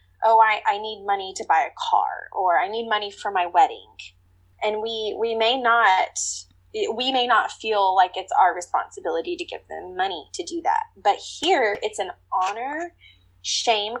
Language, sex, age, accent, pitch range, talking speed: English, female, 20-39, American, 175-255 Hz, 180 wpm